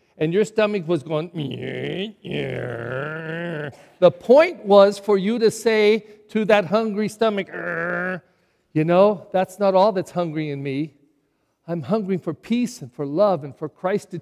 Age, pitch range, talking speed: 50-69, 165-230 Hz, 150 wpm